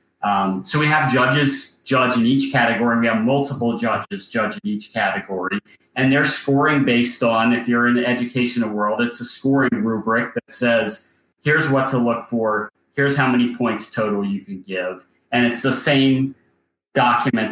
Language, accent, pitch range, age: English, American, 110-130 Hz, 30-49